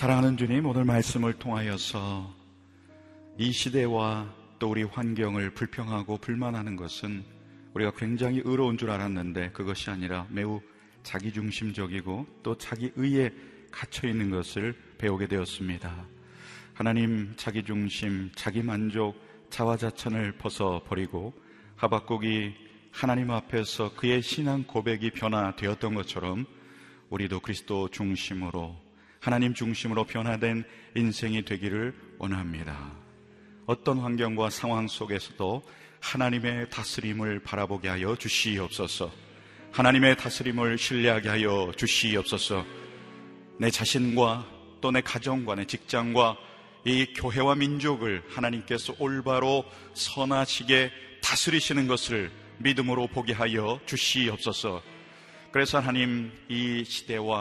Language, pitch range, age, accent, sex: Korean, 100-125 Hz, 40-59, native, male